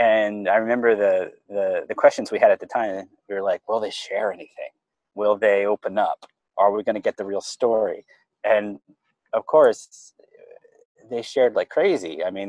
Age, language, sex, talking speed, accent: 30-49, English, male, 185 wpm, American